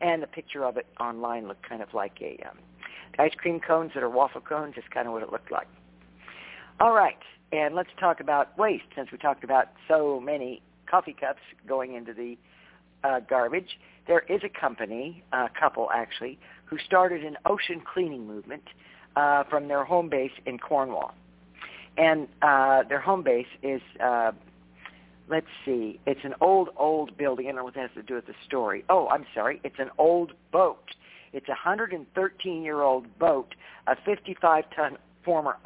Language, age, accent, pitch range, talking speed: English, 50-69, American, 120-160 Hz, 175 wpm